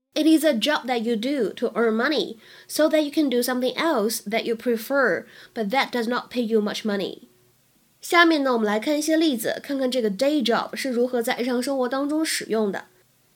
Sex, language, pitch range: female, Chinese, 220-285 Hz